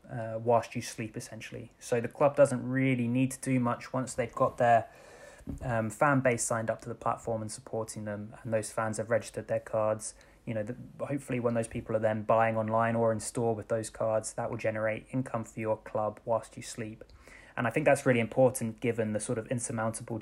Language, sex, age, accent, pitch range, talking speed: English, male, 20-39, British, 110-125 Hz, 220 wpm